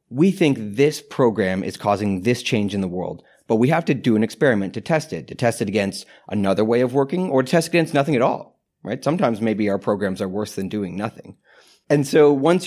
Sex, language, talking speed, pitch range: male, English, 235 wpm, 105-140 Hz